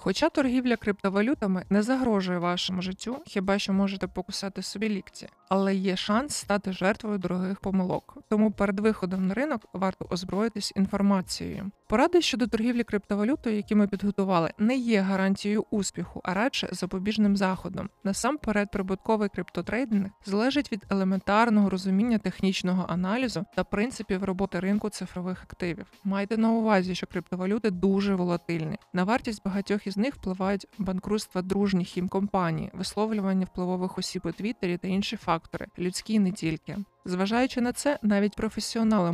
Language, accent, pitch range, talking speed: Ukrainian, native, 185-215 Hz, 135 wpm